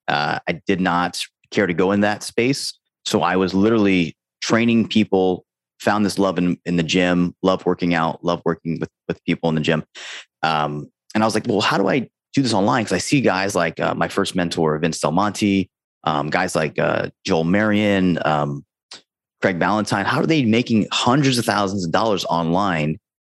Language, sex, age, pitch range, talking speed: English, male, 30-49, 85-105 Hz, 200 wpm